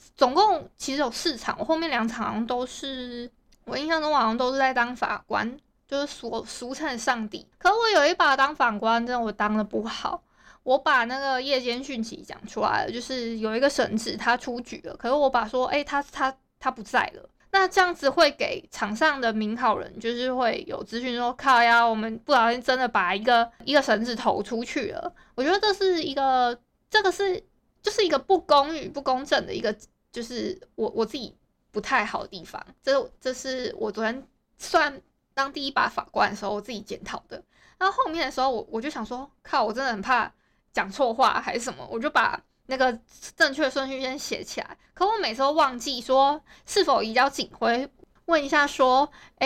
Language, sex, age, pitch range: Chinese, female, 20-39, 235-290 Hz